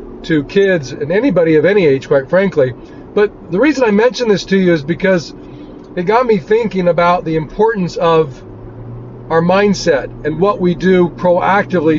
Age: 40-59